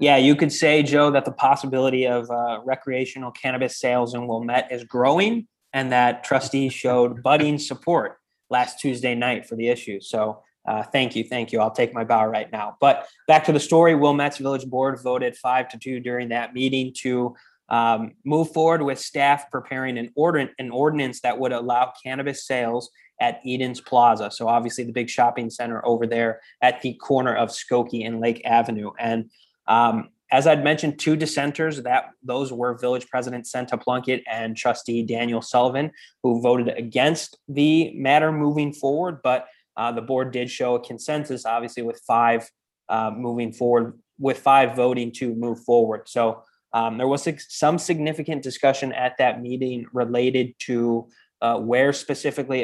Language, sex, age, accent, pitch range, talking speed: English, male, 20-39, American, 120-140 Hz, 170 wpm